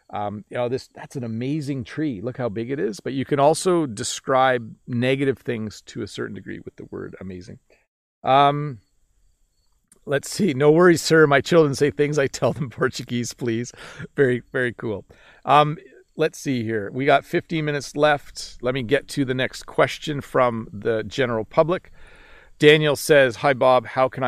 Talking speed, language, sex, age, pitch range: 180 wpm, English, male, 40-59, 120-145 Hz